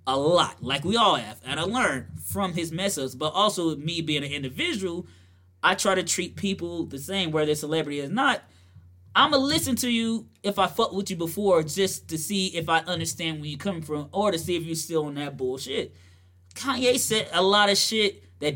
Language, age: English, 20-39